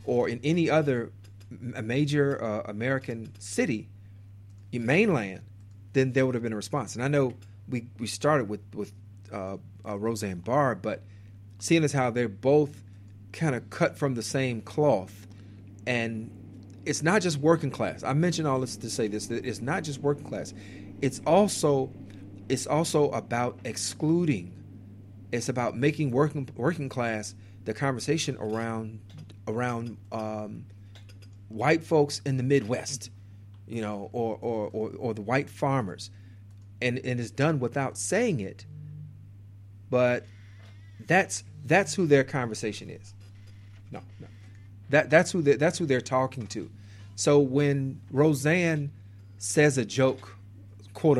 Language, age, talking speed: English, 40-59, 145 wpm